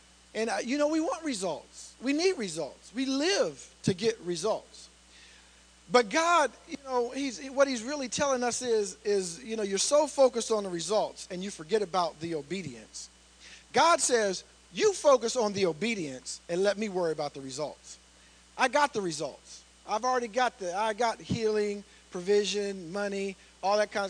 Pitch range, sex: 170-255 Hz, male